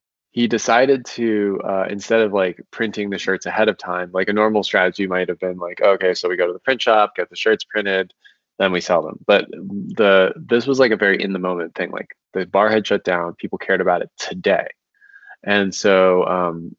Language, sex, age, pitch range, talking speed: English, male, 20-39, 90-110 Hz, 220 wpm